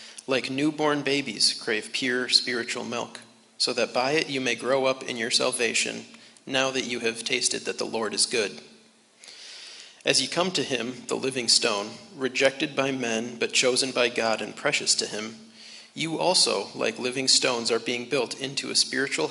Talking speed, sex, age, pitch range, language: 180 wpm, male, 40-59, 115-135 Hz, English